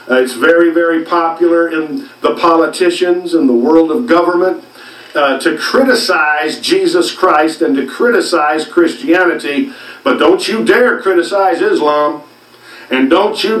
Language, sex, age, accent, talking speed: English, male, 50-69, American, 135 wpm